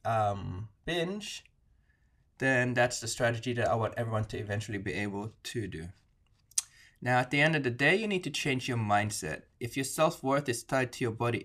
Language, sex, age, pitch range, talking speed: English, male, 20-39, 105-130 Hz, 195 wpm